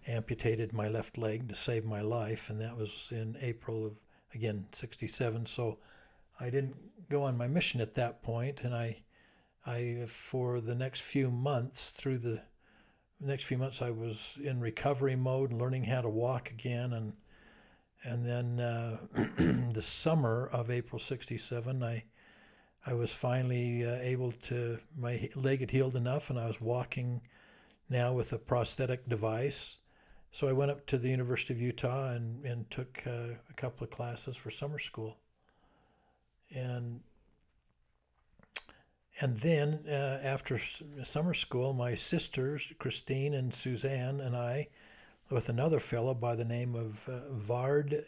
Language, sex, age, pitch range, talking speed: English, male, 60-79, 115-135 Hz, 150 wpm